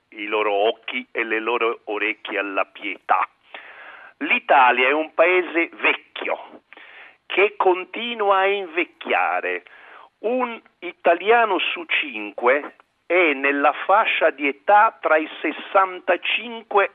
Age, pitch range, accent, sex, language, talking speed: 50-69, 145-220 Hz, native, male, Italian, 105 wpm